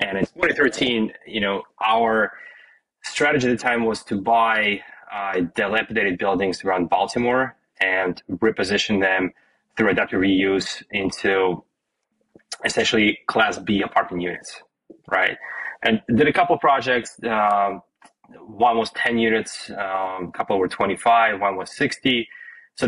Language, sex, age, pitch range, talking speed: English, male, 20-39, 100-120 Hz, 135 wpm